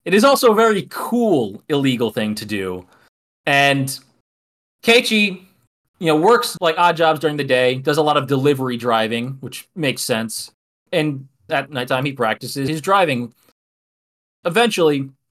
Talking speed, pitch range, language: 150 wpm, 125-160 Hz, English